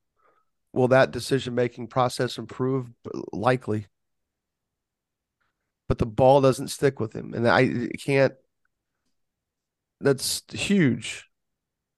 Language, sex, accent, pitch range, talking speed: English, male, American, 110-140 Hz, 90 wpm